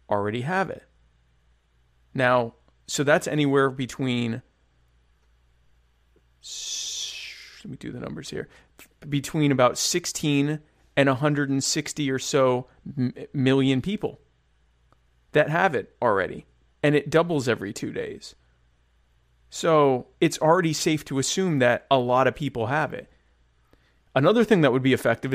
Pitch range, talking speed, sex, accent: 105-145 Hz, 125 wpm, male, American